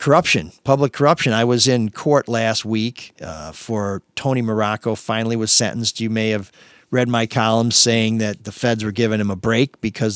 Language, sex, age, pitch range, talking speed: English, male, 50-69, 110-135 Hz, 190 wpm